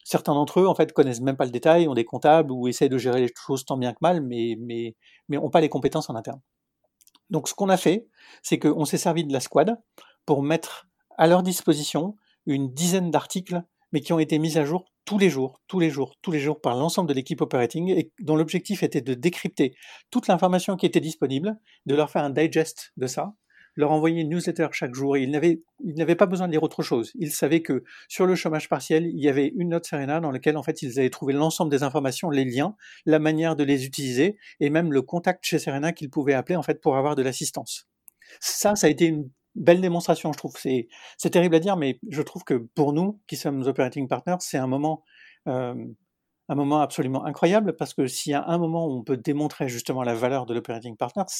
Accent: French